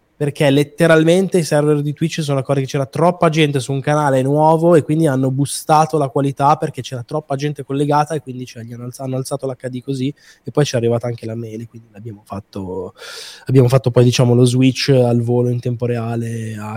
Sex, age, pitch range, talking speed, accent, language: male, 20-39, 125-150 Hz, 200 wpm, native, Italian